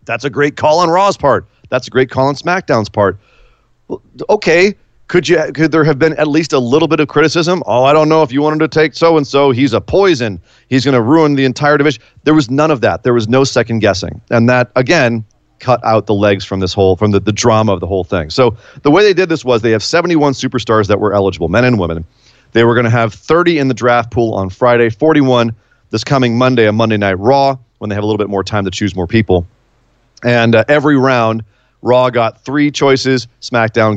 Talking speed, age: 240 wpm, 30-49